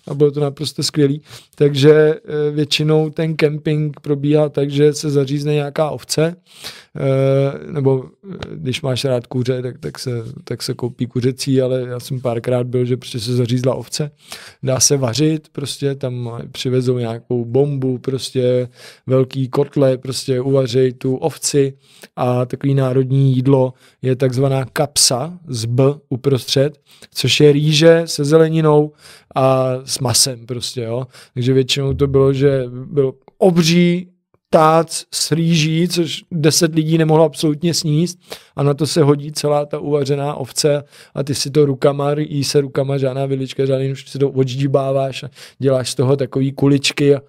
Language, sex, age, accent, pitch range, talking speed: Czech, male, 20-39, native, 130-145 Hz, 150 wpm